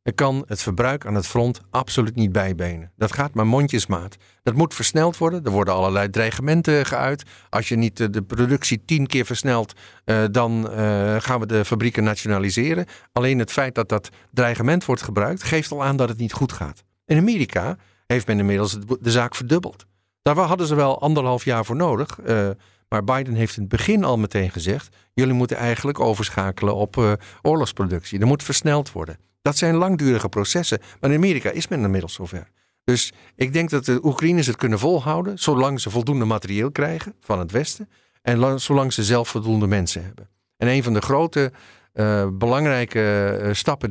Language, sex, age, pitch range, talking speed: Dutch, male, 50-69, 100-135 Hz, 180 wpm